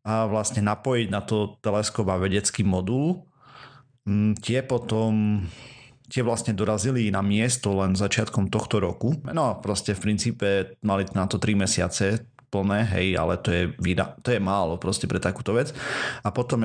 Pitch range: 100-120 Hz